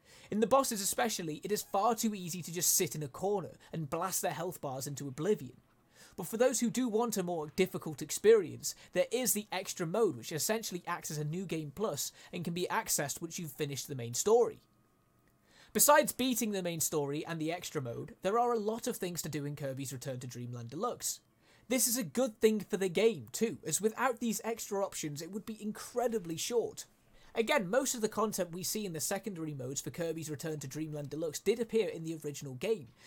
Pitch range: 155-225 Hz